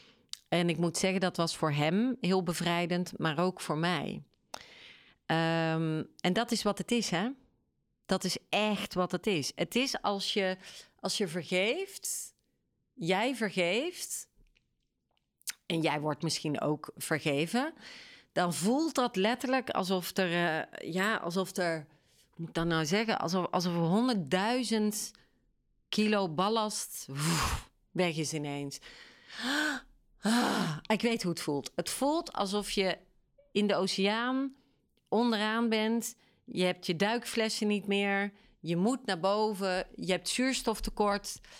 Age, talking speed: 40-59, 140 wpm